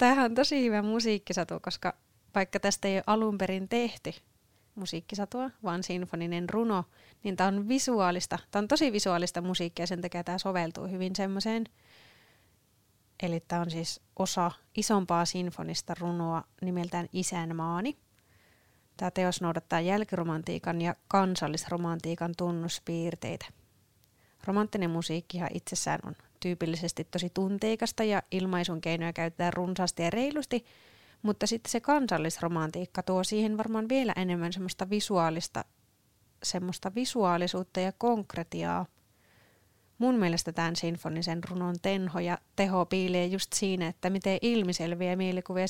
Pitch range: 170-195 Hz